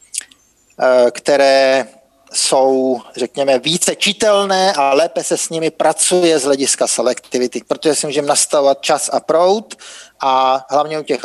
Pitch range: 140-175 Hz